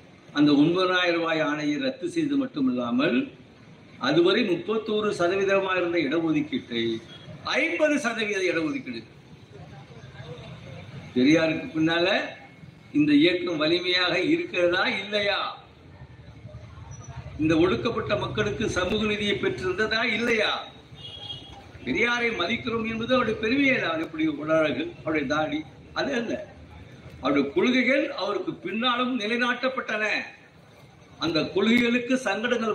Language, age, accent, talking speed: Tamil, 60-79, native, 85 wpm